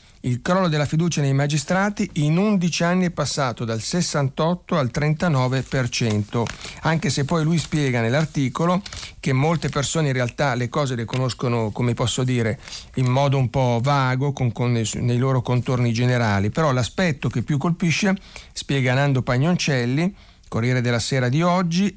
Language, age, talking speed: Italian, 50-69, 150 wpm